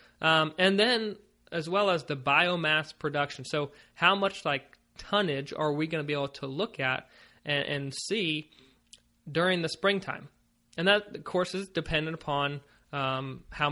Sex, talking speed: male, 165 wpm